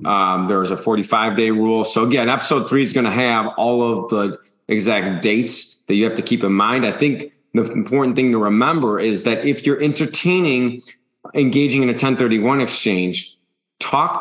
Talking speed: 190 wpm